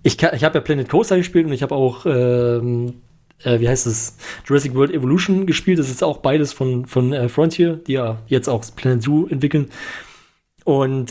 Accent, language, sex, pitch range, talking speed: German, German, male, 130-155 Hz, 195 wpm